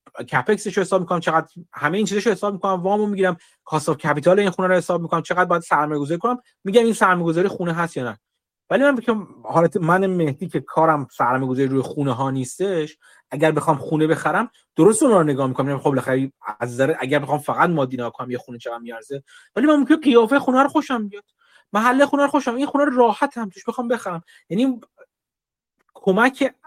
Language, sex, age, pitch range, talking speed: Persian, male, 30-49, 150-230 Hz, 220 wpm